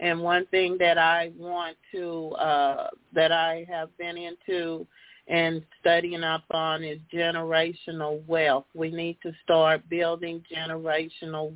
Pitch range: 165-210 Hz